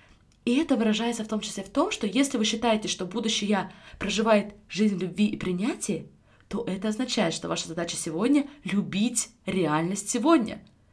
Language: Russian